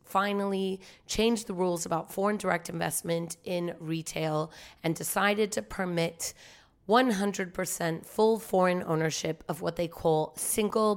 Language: English